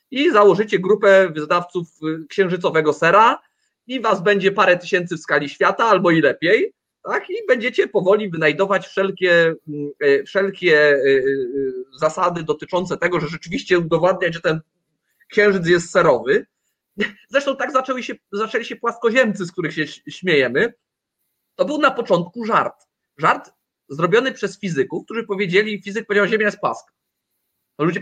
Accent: native